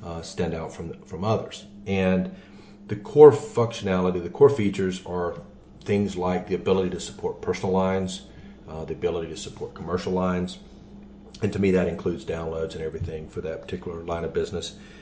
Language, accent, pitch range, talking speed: English, American, 90-105 Hz, 170 wpm